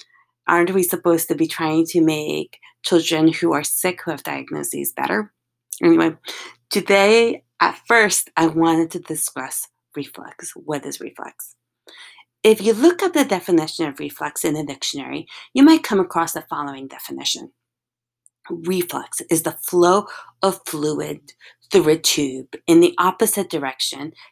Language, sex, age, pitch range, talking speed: English, female, 30-49, 160-220 Hz, 145 wpm